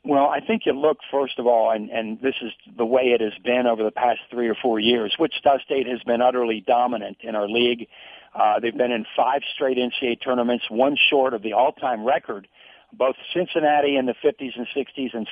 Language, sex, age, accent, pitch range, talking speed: English, male, 50-69, American, 120-140 Hz, 215 wpm